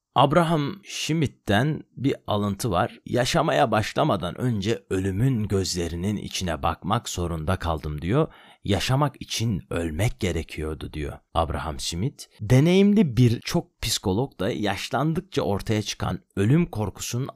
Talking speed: 105 wpm